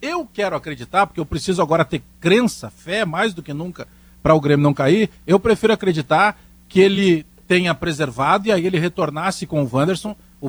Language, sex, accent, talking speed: Portuguese, male, Brazilian, 195 wpm